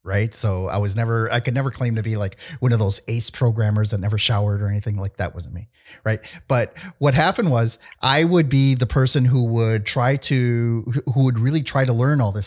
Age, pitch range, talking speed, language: 30-49, 110-150 Hz, 230 wpm, English